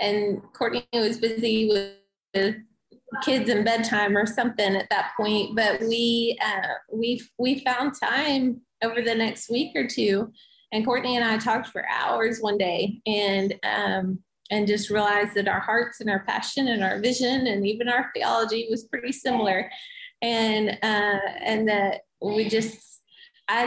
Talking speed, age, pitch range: 160 wpm, 20-39, 205-240 Hz